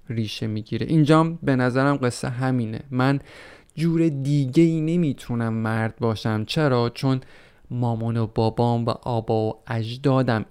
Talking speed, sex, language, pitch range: 125 wpm, male, Persian, 115-145 Hz